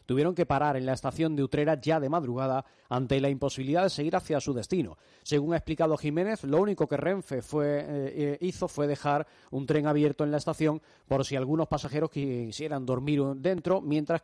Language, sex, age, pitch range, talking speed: Spanish, male, 30-49, 135-165 Hz, 190 wpm